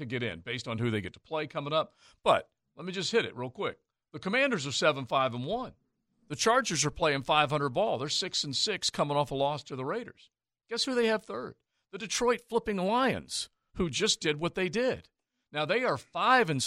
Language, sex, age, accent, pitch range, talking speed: English, male, 50-69, American, 125-180 Hz, 225 wpm